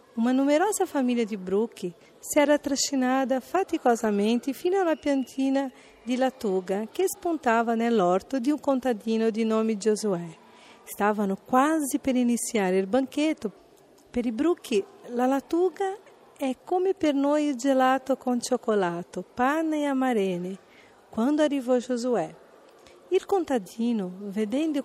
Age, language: 50-69, Italian